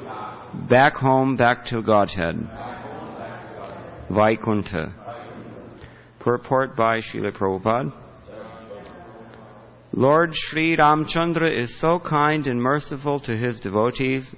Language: English